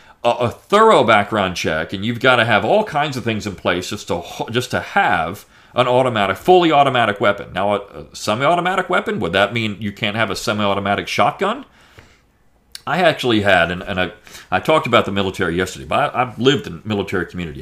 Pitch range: 90-120 Hz